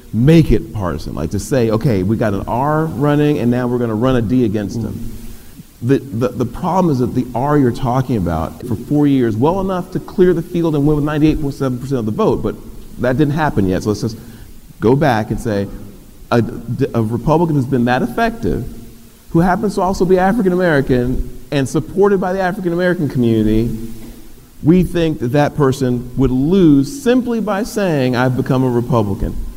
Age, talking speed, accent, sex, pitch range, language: 40-59, 190 wpm, American, male, 110-150 Hz, English